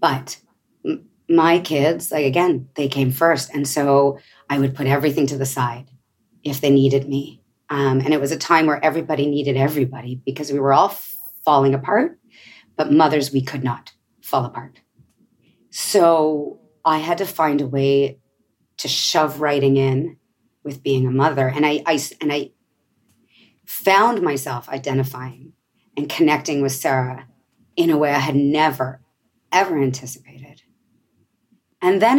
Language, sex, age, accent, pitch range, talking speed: English, female, 40-59, American, 135-155 Hz, 155 wpm